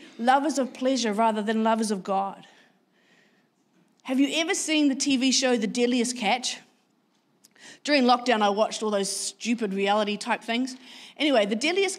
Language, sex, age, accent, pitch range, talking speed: English, female, 30-49, Australian, 210-255 Hz, 155 wpm